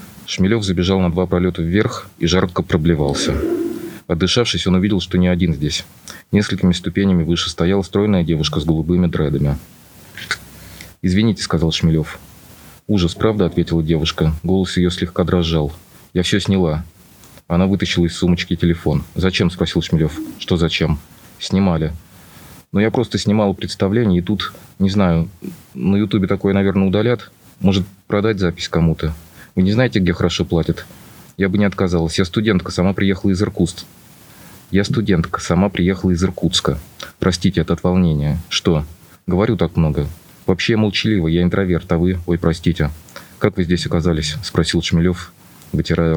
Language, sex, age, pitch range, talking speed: Russian, male, 30-49, 85-95 Hz, 150 wpm